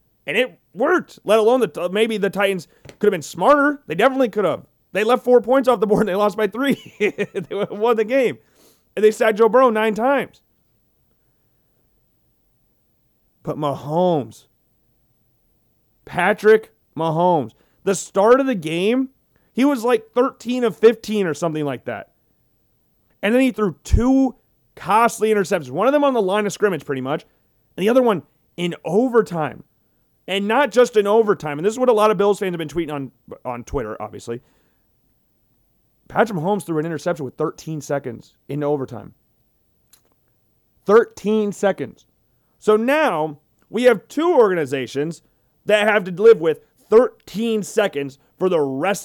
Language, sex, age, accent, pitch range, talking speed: English, male, 30-49, American, 150-225 Hz, 160 wpm